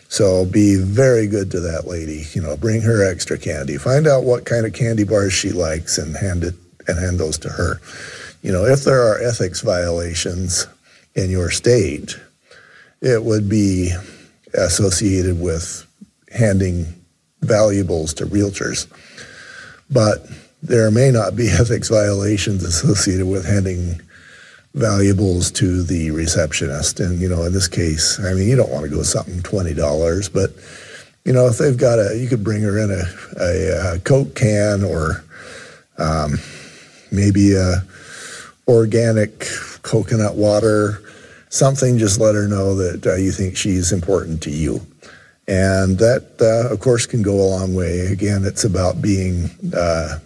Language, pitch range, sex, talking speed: English, 90-110 Hz, male, 160 wpm